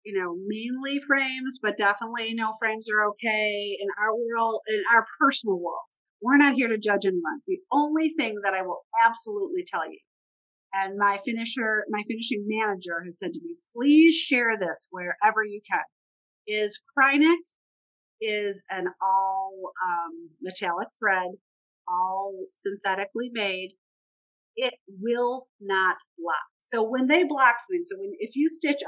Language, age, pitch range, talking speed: English, 40-59, 195-255 Hz, 155 wpm